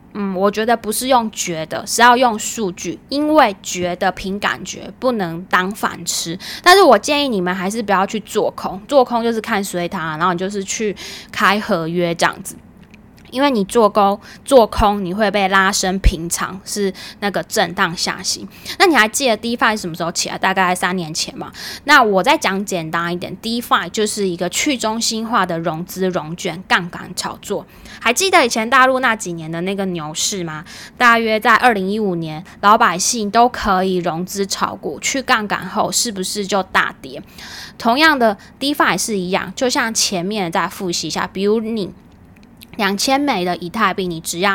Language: Chinese